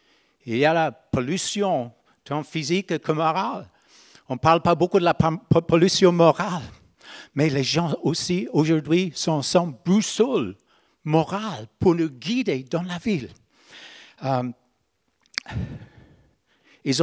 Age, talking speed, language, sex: 60-79, 120 wpm, French, male